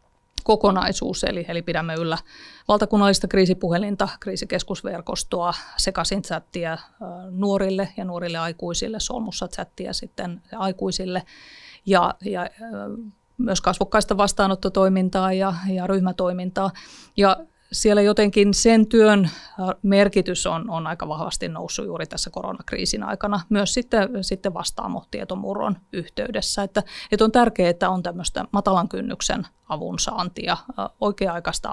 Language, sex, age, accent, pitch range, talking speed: Finnish, female, 30-49, native, 175-210 Hz, 105 wpm